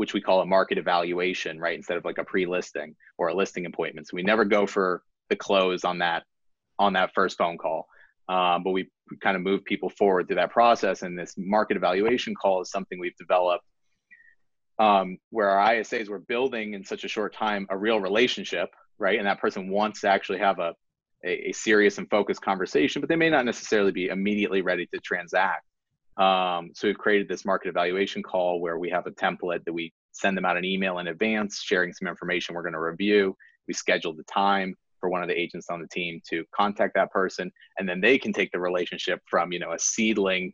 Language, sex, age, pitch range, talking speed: English, male, 30-49, 90-105 Hz, 215 wpm